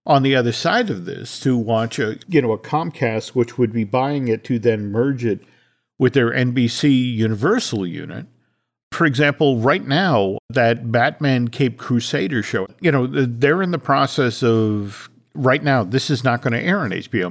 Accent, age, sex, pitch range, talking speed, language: American, 50-69, male, 110-145 Hz, 185 wpm, English